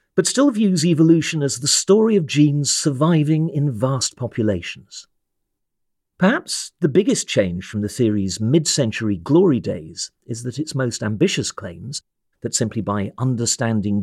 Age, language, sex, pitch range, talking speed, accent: 50-69, English, male, 110-155 Hz, 140 wpm, British